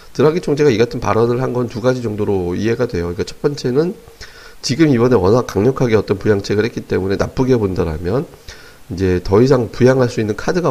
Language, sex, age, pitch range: Korean, male, 30-49, 95-125 Hz